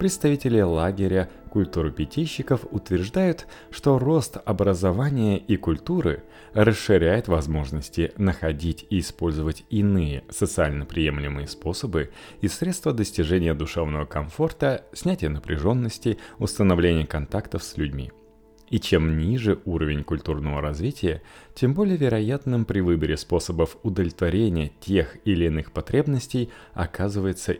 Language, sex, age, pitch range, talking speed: Russian, male, 30-49, 80-115 Hz, 100 wpm